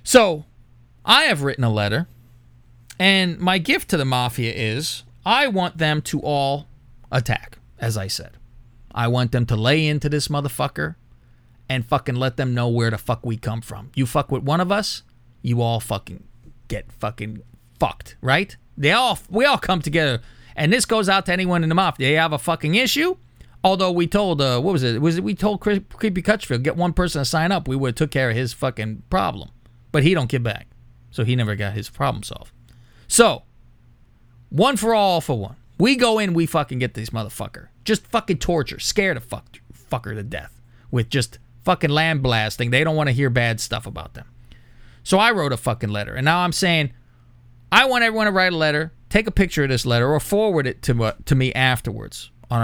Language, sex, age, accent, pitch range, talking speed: English, male, 30-49, American, 120-165 Hz, 205 wpm